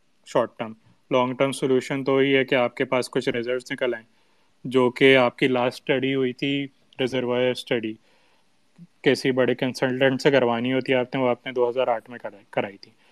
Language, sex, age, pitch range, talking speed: Urdu, male, 20-39, 125-135 Hz, 195 wpm